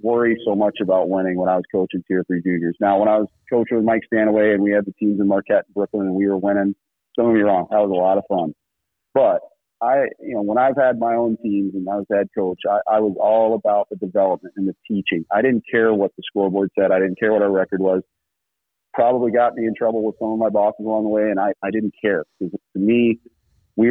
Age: 40-59